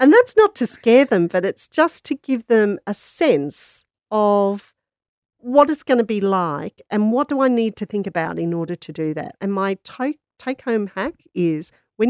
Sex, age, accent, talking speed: female, 40-59, Australian, 200 wpm